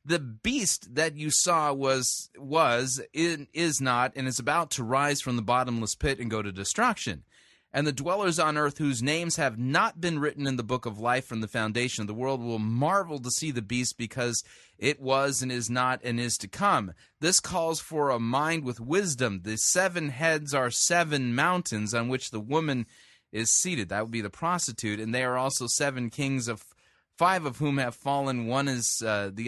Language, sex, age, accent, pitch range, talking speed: English, male, 30-49, American, 110-145 Hz, 205 wpm